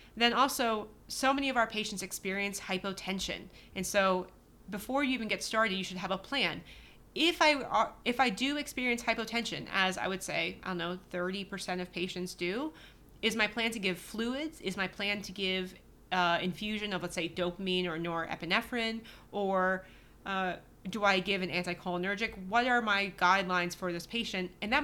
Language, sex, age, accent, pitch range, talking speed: English, female, 30-49, American, 180-220 Hz, 180 wpm